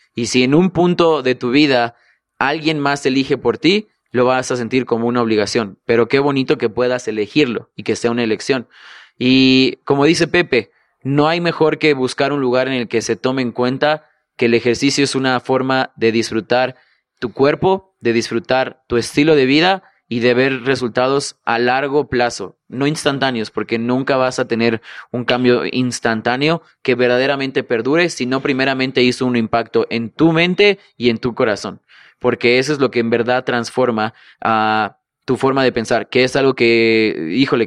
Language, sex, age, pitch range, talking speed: Spanish, male, 20-39, 120-140 Hz, 185 wpm